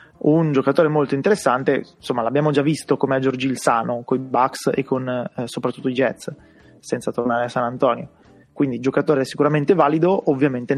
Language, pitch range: Italian, 125-145 Hz